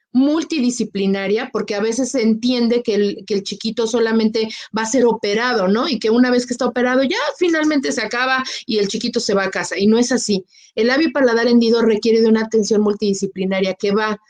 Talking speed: 210 wpm